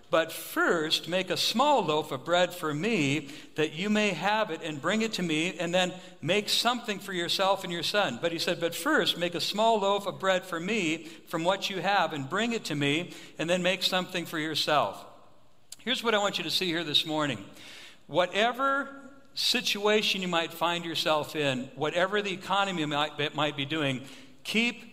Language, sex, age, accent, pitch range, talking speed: English, male, 60-79, American, 160-200 Hz, 195 wpm